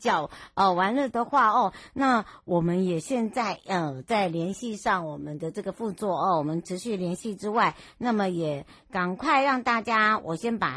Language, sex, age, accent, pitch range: Chinese, male, 60-79, American, 180-240 Hz